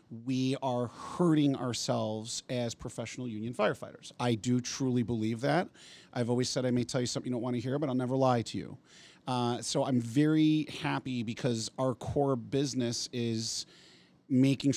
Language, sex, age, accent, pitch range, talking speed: English, male, 40-59, American, 115-145 Hz, 175 wpm